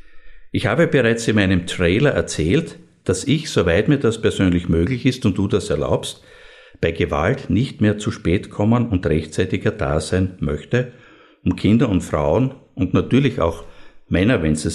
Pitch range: 85-120 Hz